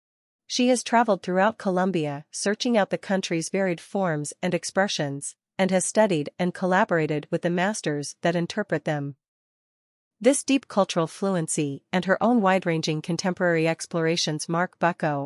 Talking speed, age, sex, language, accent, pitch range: 140 wpm, 40-59, female, English, American, 165-195 Hz